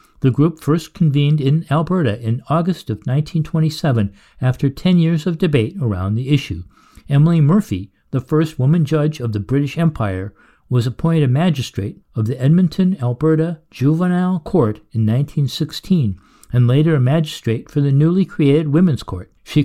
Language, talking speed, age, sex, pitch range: English, 155 wpm, 60-79, male, 120-160 Hz